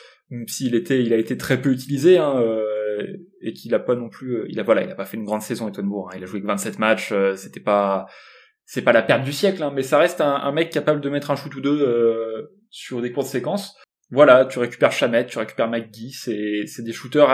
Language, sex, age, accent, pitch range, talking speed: French, male, 20-39, French, 115-140 Hz, 265 wpm